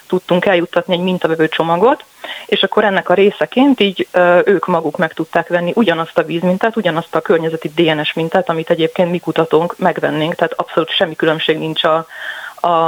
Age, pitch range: 30-49, 160-185 Hz